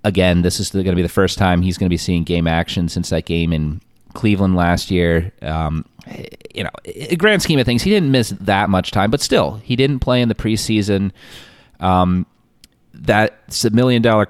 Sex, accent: male, American